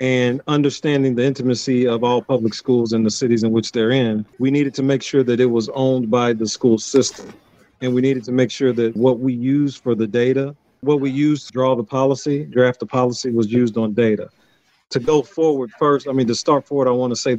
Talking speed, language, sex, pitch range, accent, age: 230 wpm, English, male, 120-140 Hz, American, 40-59